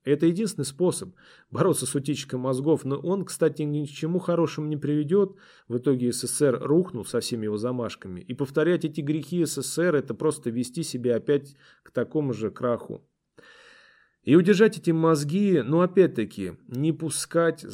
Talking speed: 160 wpm